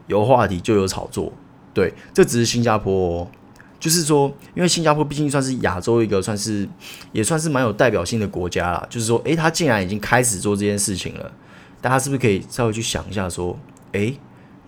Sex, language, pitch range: male, Chinese, 95-120 Hz